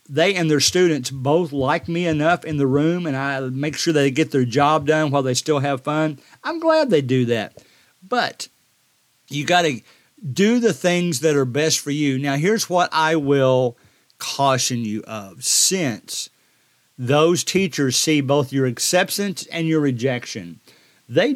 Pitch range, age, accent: 130-170 Hz, 50-69, American